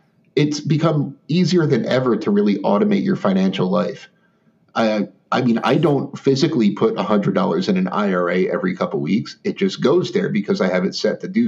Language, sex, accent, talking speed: English, male, American, 205 wpm